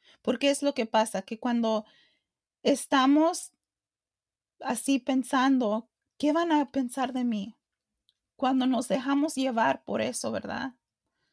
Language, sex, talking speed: English, female, 120 wpm